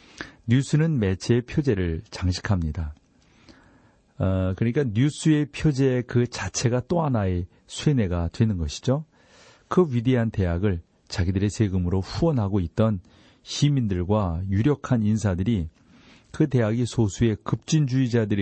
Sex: male